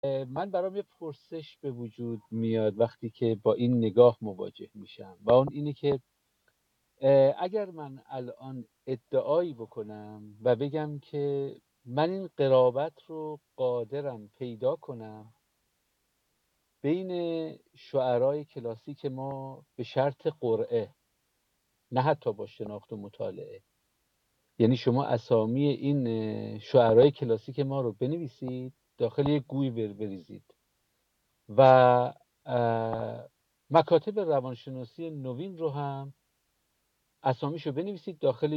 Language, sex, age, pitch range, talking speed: Persian, male, 50-69, 125-155 Hz, 110 wpm